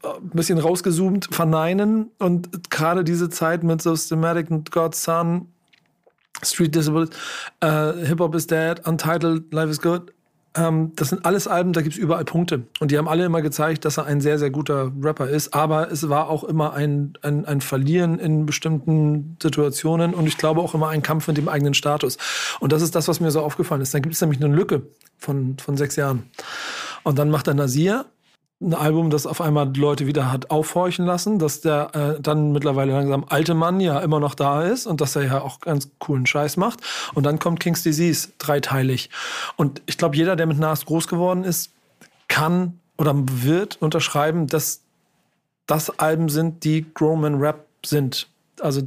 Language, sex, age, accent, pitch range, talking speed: German, male, 40-59, German, 150-170 Hz, 190 wpm